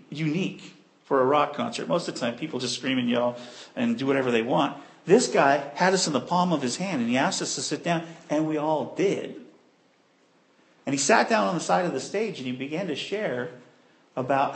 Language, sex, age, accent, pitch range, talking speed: English, male, 50-69, American, 140-205 Hz, 230 wpm